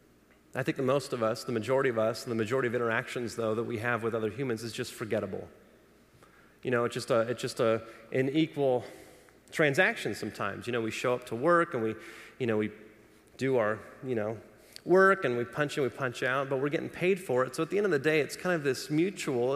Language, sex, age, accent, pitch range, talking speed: English, male, 30-49, American, 125-190 Hz, 240 wpm